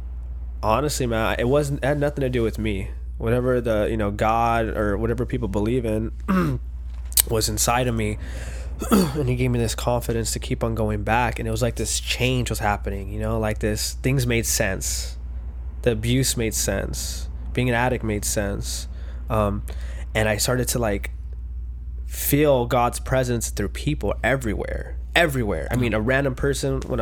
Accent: American